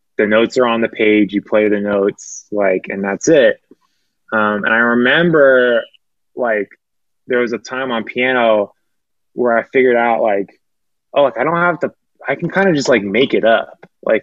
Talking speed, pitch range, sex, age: 195 wpm, 105-135 Hz, male, 20-39